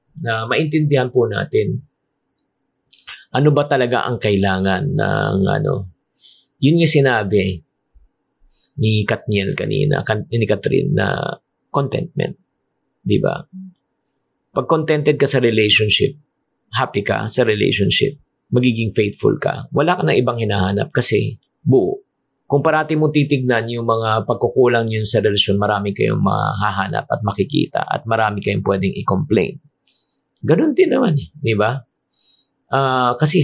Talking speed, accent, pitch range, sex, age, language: 120 wpm, native, 105-145 Hz, male, 50-69, Filipino